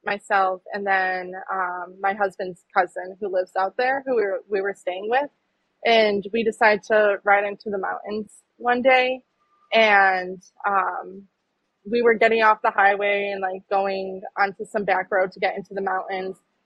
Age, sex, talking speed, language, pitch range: 20-39, female, 175 wpm, English, 190-220 Hz